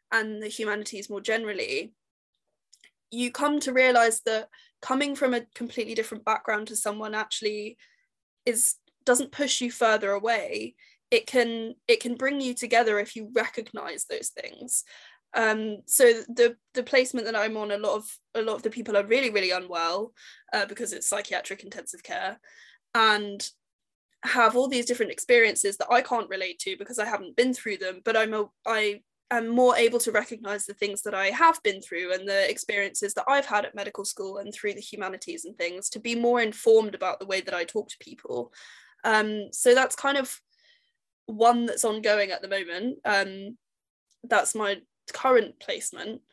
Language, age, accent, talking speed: English, 10-29, British, 180 wpm